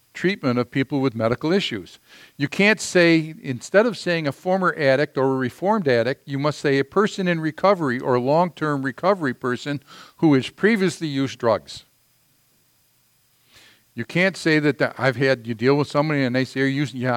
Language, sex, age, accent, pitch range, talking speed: English, male, 50-69, American, 130-170 Hz, 180 wpm